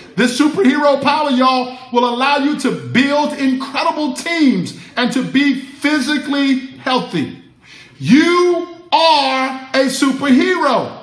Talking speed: 110 wpm